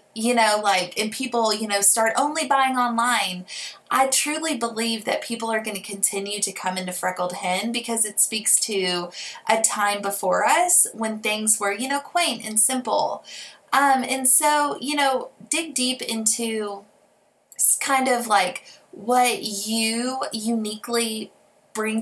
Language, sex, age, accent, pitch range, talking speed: English, female, 20-39, American, 200-250 Hz, 155 wpm